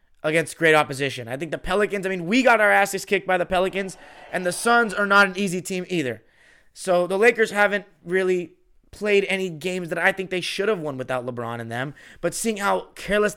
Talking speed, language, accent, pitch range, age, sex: 220 wpm, English, American, 145-195 Hz, 20-39, male